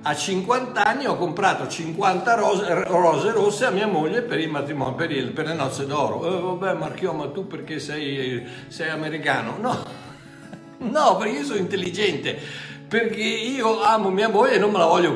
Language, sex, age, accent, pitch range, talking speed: Italian, male, 60-79, native, 140-185 Hz, 180 wpm